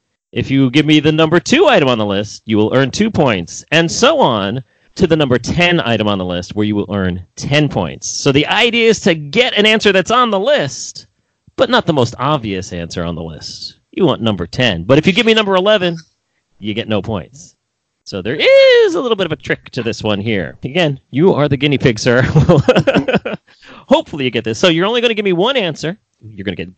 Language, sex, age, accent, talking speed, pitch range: English, male, 40-59, American, 240 wpm, 110-175 Hz